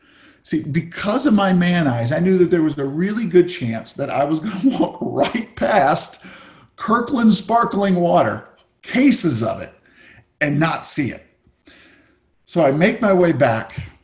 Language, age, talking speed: English, 50-69, 165 wpm